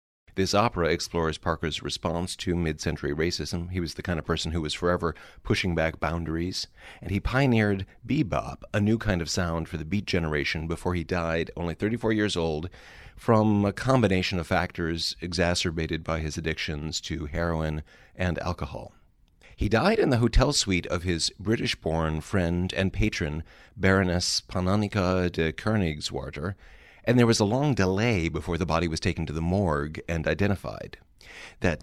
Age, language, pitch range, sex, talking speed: 40-59, English, 85-105 Hz, male, 160 wpm